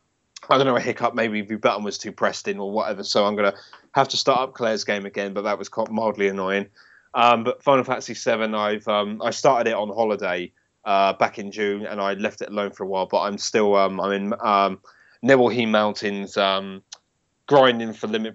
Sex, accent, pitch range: male, British, 100-120 Hz